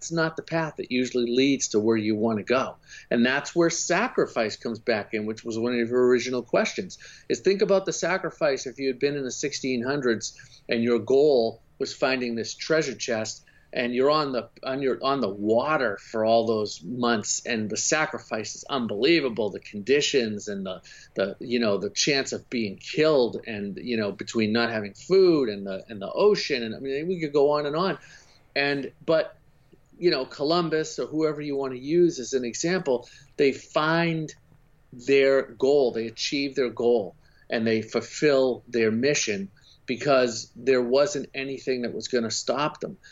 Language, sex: English, male